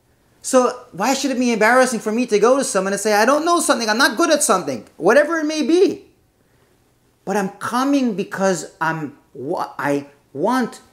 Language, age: English, 30-49